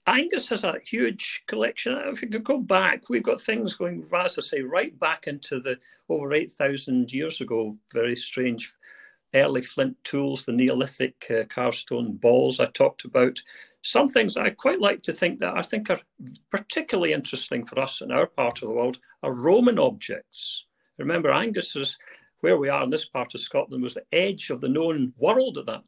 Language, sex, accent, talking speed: English, male, British, 190 wpm